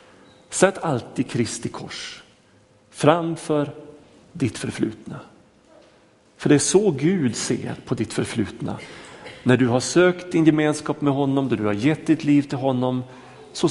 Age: 40-59